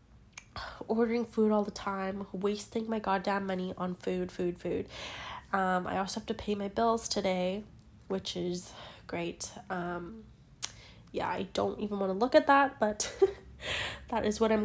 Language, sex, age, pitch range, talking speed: English, female, 10-29, 185-235 Hz, 165 wpm